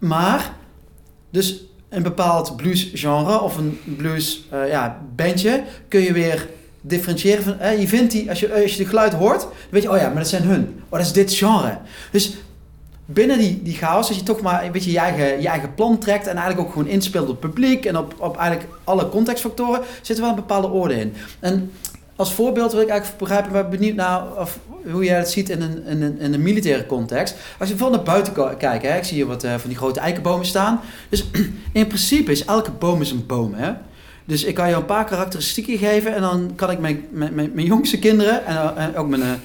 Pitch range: 155-210 Hz